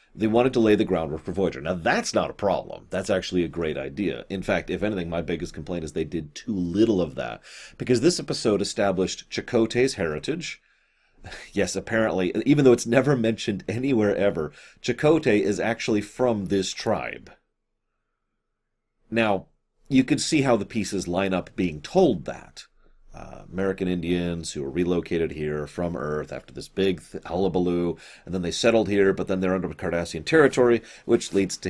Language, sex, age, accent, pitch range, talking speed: English, male, 30-49, American, 90-125 Hz, 175 wpm